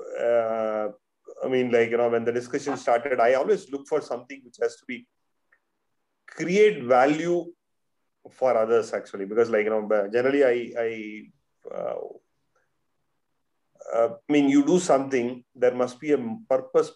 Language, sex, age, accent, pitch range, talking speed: English, male, 30-49, Indian, 120-150 Hz, 150 wpm